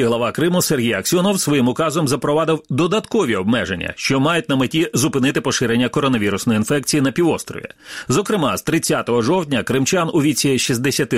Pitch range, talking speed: 130-185 Hz, 145 wpm